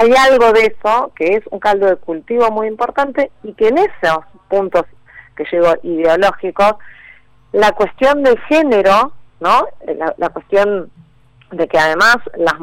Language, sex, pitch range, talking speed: Spanish, female, 155-205 Hz, 150 wpm